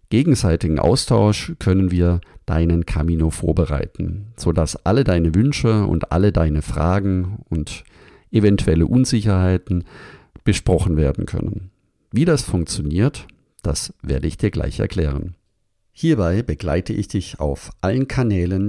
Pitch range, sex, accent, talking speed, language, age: 85-110 Hz, male, German, 120 wpm, German, 50-69